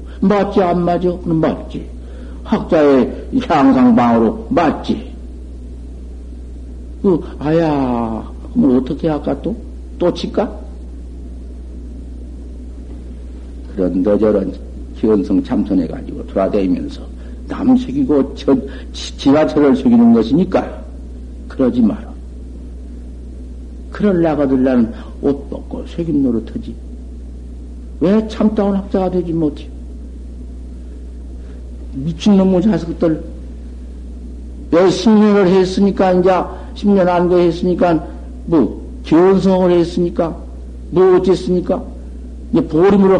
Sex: male